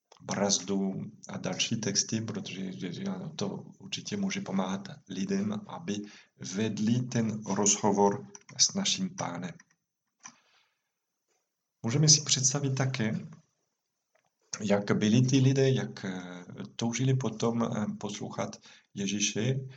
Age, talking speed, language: 40-59, 95 wpm, Czech